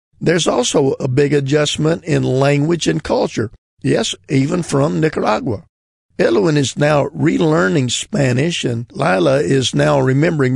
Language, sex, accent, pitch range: English, male, American, 130-150 Hz